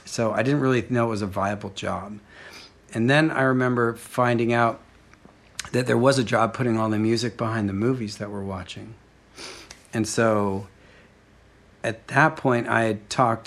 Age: 40-59